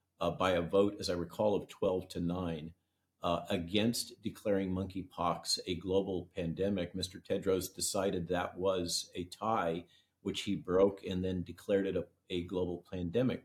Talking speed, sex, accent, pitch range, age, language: 155 wpm, male, American, 90-105 Hz, 50-69, English